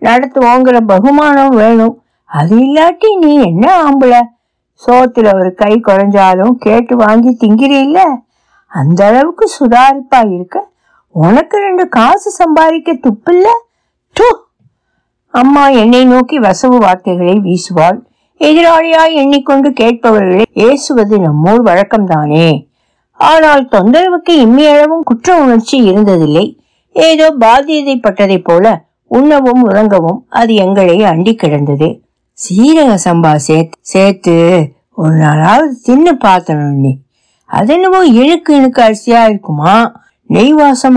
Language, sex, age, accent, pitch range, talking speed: Tamil, female, 60-79, native, 195-280 Hz, 80 wpm